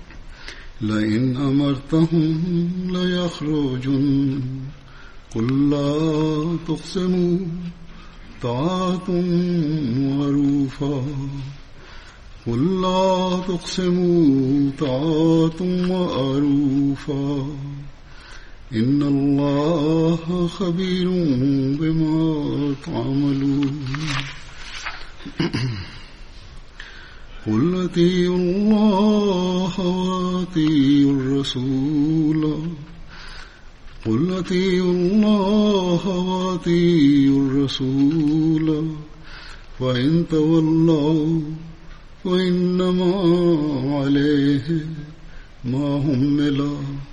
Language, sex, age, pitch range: Turkish, male, 50-69, 140-175 Hz